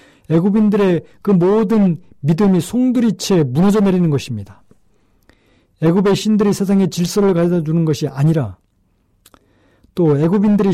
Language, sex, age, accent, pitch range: Korean, male, 40-59, native, 135-195 Hz